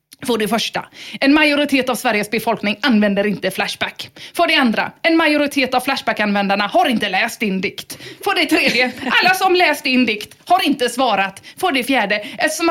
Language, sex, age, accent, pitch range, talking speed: English, female, 30-49, Swedish, 195-265 Hz, 180 wpm